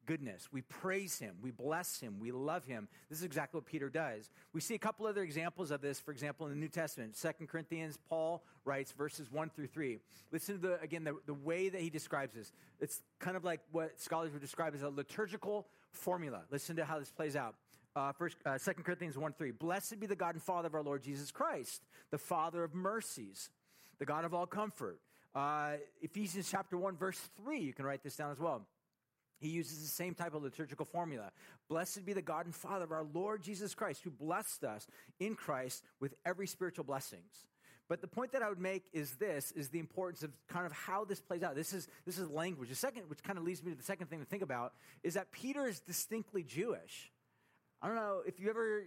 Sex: male